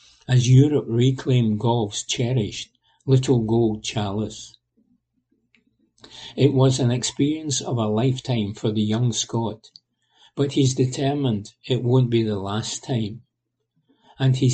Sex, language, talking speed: male, English, 125 wpm